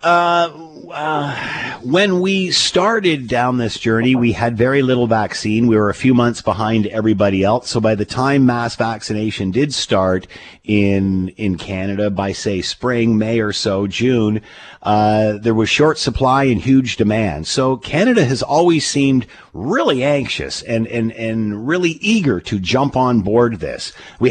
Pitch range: 105-140 Hz